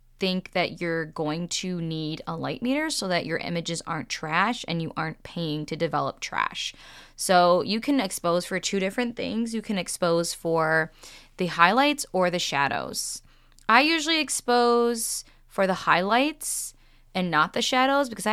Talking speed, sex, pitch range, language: 165 wpm, female, 165-210 Hz, English